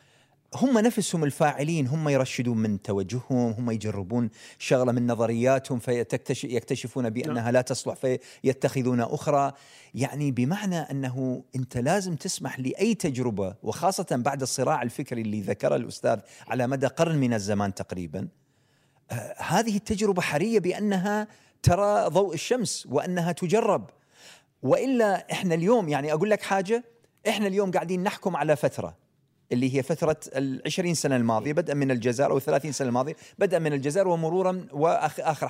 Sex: male